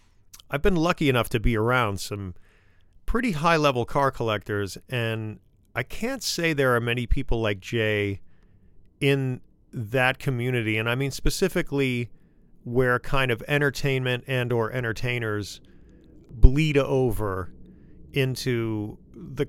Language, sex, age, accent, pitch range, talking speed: English, male, 40-59, American, 105-135 Hz, 125 wpm